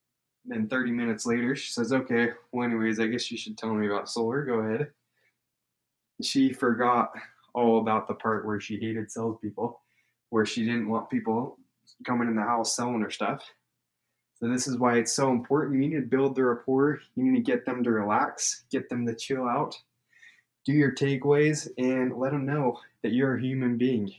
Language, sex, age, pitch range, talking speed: English, male, 20-39, 110-130 Hz, 195 wpm